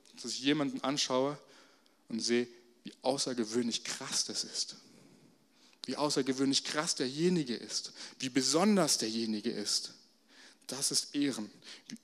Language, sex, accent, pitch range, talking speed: German, male, German, 130-175 Hz, 120 wpm